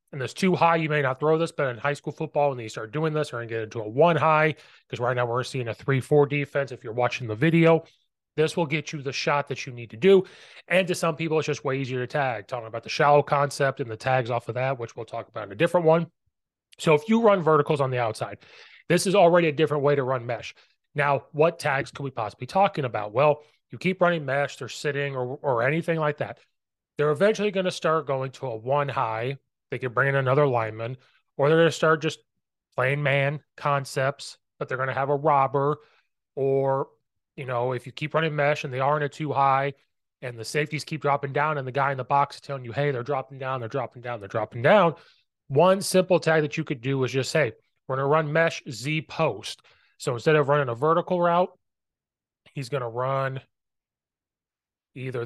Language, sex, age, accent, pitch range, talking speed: English, male, 30-49, American, 130-155 Hz, 230 wpm